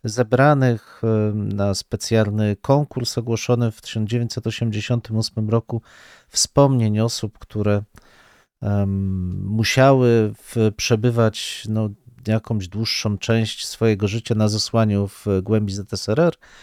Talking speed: 90 wpm